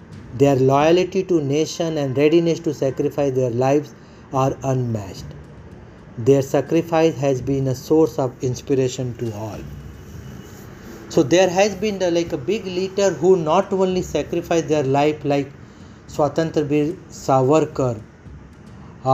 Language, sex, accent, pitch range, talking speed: Hindi, male, native, 115-160 Hz, 130 wpm